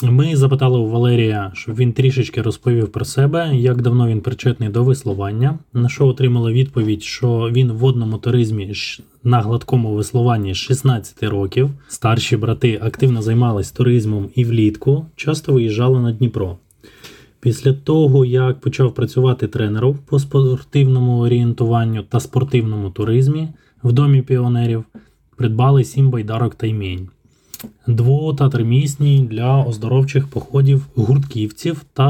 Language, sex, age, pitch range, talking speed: Ukrainian, male, 20-39, 115-135 Hz, 125 wpm